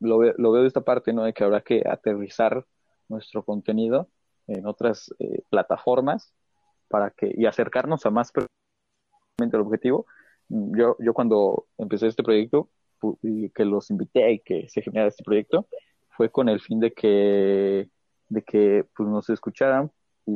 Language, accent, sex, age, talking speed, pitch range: Spanish, Mexican, male, 20-39, 160 wpm, 105-120 Hz